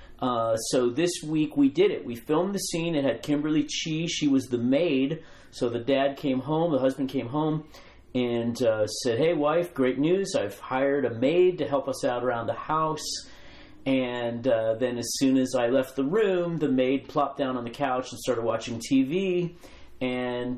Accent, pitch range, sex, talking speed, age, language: American, 115-145 Hz, male, 200 wpm, 40-59, English